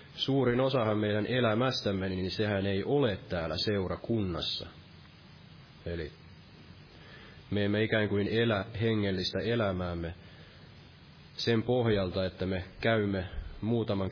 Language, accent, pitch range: Finnish, native, 95-110 Hz